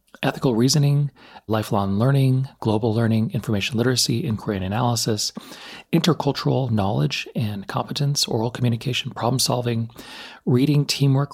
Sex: male